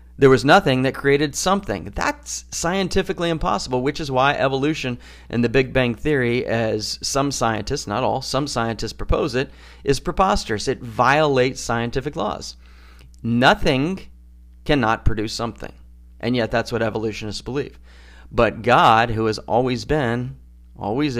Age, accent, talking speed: 40-59, American, 140 wpm